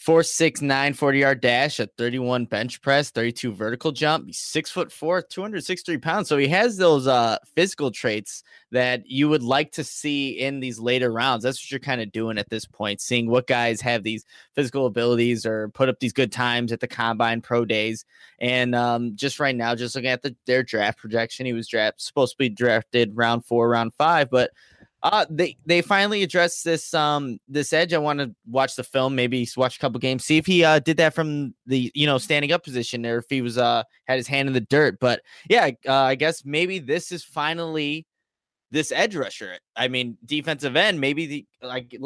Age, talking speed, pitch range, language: 20-39, 215 wpm, 120-150 Hz, English